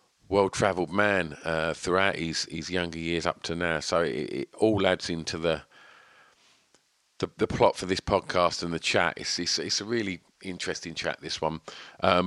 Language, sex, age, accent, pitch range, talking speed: English, male, 50-69, British, 85-100 Hz, 180 wpm